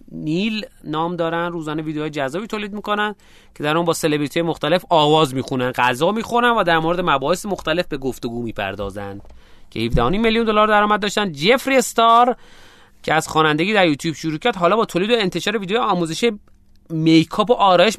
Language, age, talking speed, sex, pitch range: Persian, 30-49, 165 wpm, male, 150-215 Hz